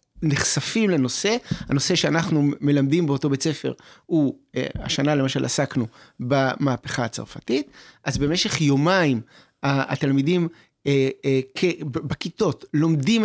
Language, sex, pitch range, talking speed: Hebrew, male, 135-175 Hz, 115 wpm